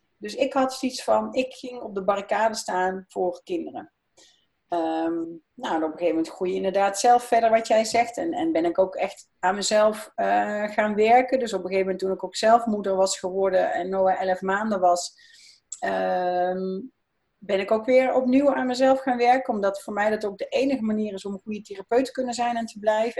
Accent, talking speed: Dutch, 210 wpm